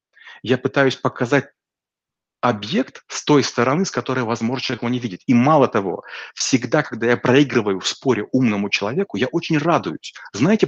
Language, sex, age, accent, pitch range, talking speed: Russian, male, 30-49, native, 115-135 Hz, 165 wpm